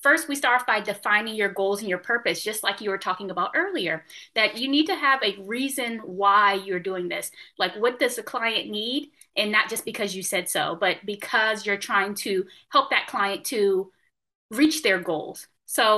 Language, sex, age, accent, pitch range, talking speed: English, female, 20-39, American, 195-240 Hz, 205 wpm